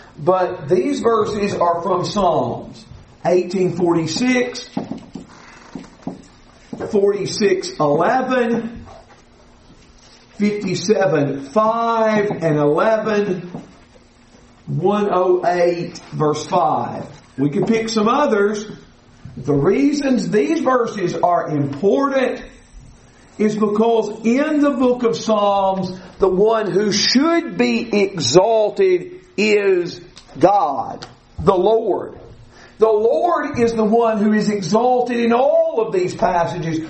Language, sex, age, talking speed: English, male, 50-69, 90 wpm